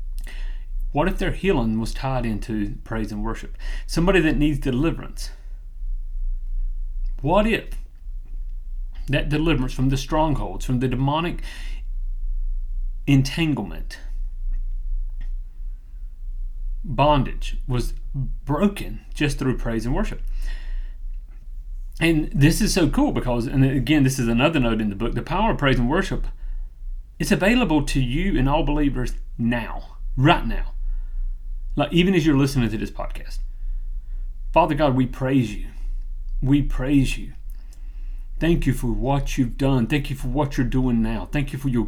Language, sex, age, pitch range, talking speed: English, male, 30-49, 100-140 Hz, 140 wpm